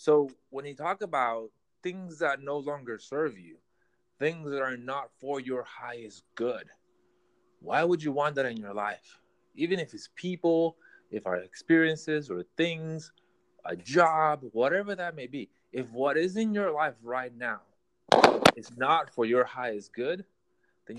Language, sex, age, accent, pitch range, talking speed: English, male, 30-49, American, 130-185 Hz, 165 wpm